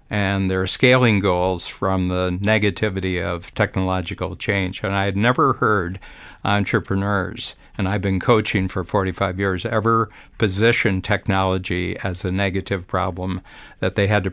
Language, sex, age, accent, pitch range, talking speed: English, male, 60-79, American, 95-110 Hz, 140 wpm